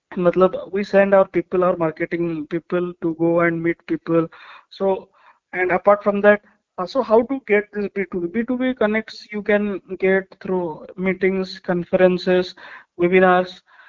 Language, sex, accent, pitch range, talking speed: Hindi, male, native, 170-205 Hz, 145 wpm